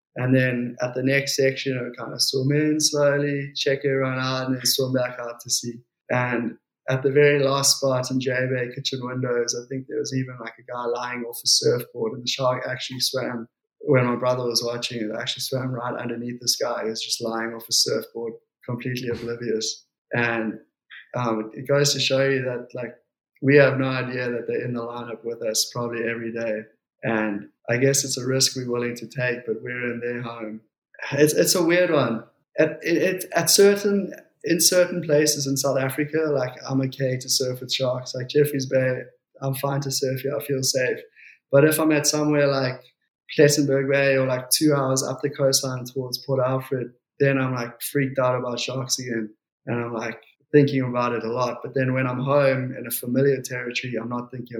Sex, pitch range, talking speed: male, 120-140 Hz, 210 wpm